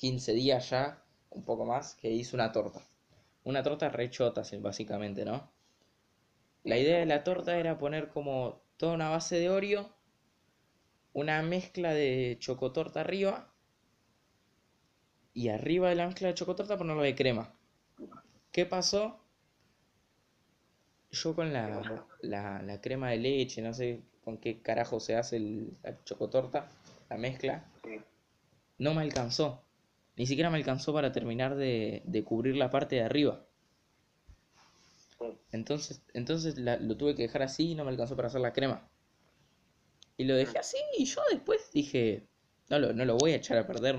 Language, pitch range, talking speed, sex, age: Spanish, 115-160 Hz, 155 wpm, male, 20-39